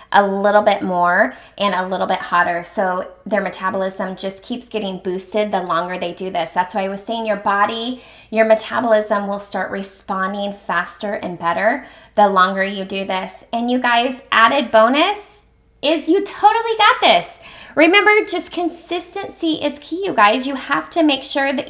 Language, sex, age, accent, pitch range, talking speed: English, female, 20-39, American, 195-260 Hz, 175 wpm